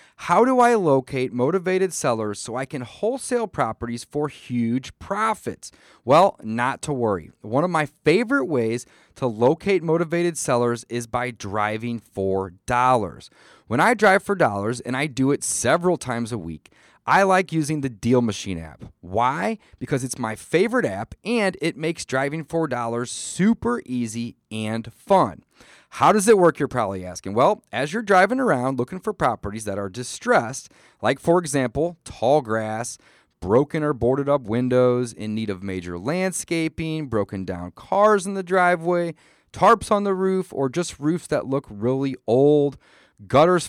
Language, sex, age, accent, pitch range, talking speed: English, male, 30-49, American, 120-175 Hz, 165 wpm